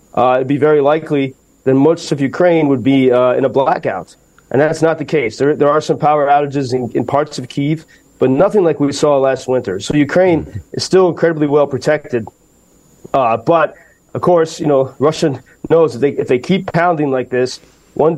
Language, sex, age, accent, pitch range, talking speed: English, male, 30-49, American, 130-160 Hz, 205 wpm